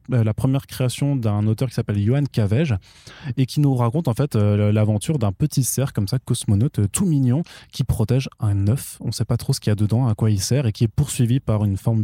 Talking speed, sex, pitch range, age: 255 wpm, male, 105-125 Hz, 20-39